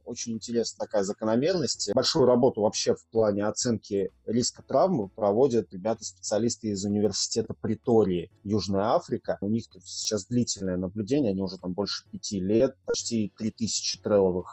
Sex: male